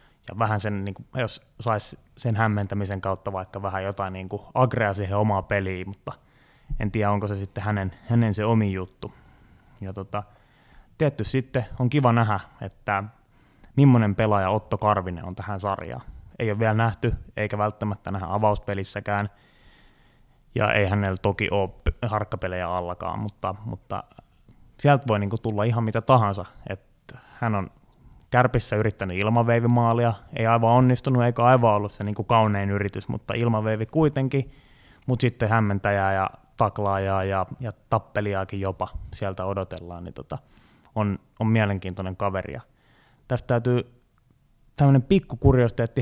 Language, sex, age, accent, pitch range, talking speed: Finnish, male, 20-39, native, 100-120 Hz, 145 wpm